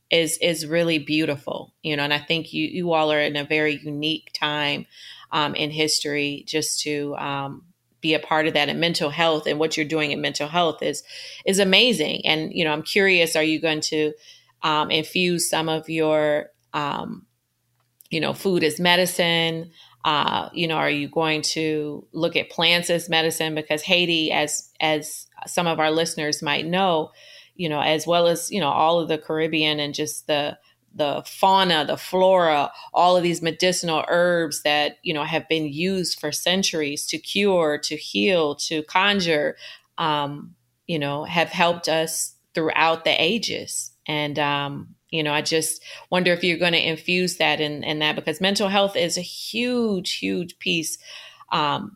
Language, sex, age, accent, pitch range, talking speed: English, female, 30-49, American, 150-170 Hz, 180 wpm